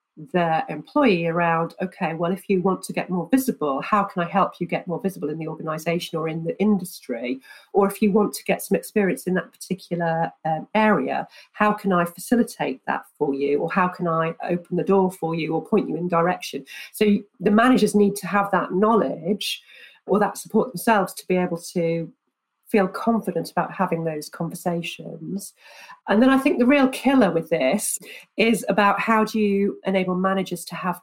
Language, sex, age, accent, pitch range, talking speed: English, female, 40-59, British, 170-220 Hz, 195 wpm